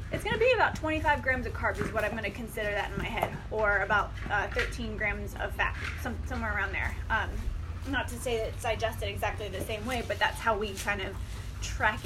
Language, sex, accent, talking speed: English, female, American, 225 wpm